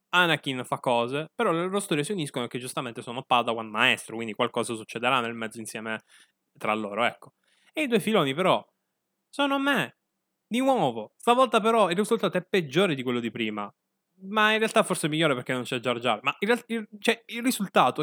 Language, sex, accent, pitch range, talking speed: Italian, male, native, 130-205 Hz, 205 wpm